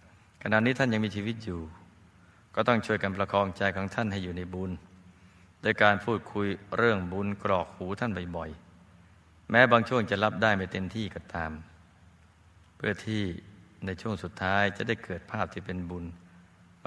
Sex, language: male, Thai